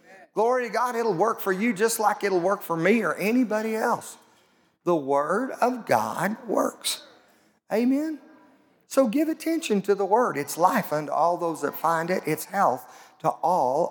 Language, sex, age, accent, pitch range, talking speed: English, male, 40-59, American, 165-225 Hz, 175 wpm